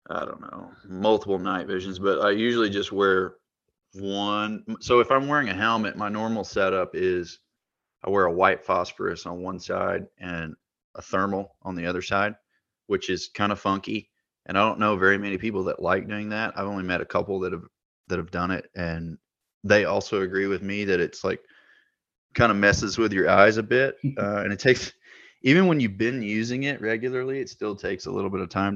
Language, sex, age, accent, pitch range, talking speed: English, male, 30-49, American, 95-105 Hz, 210 wpm